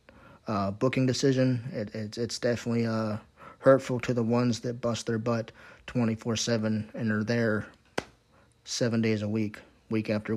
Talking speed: 150 wpm